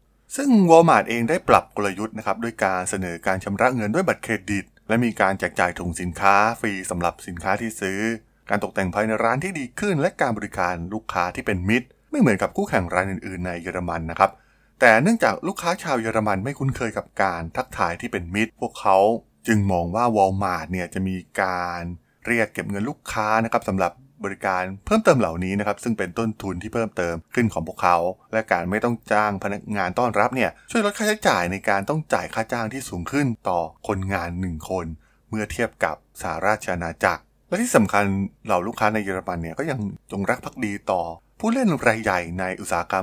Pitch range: 90-115 Hz